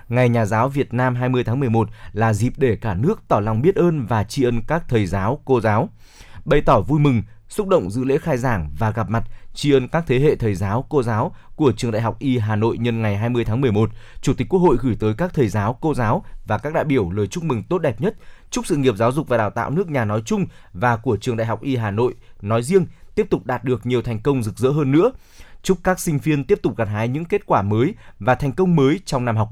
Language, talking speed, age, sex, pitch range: Vietnamese, 270 wpm, 20-39, male, 110-145 Hz